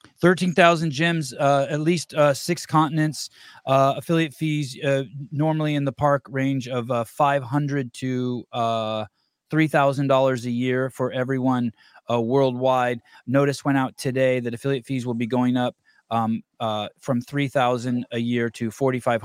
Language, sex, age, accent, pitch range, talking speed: English, male, 20-39, American, 120-140 Hz, 165 wpm